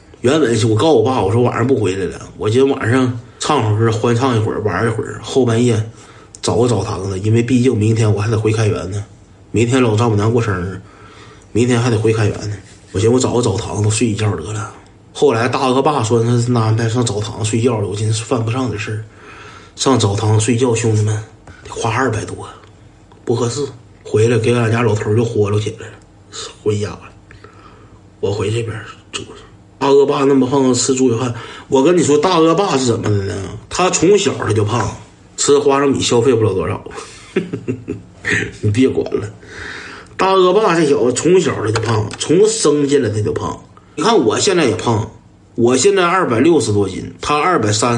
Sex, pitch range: male, 105-135 Hz